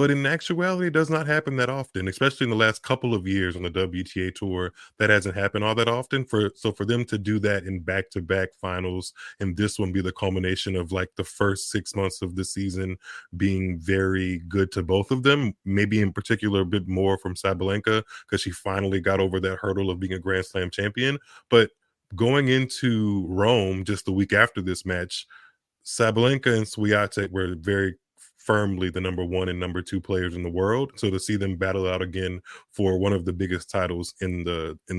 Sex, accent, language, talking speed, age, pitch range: male, American, English, 210 wpm, 20-39, 95-105 Hz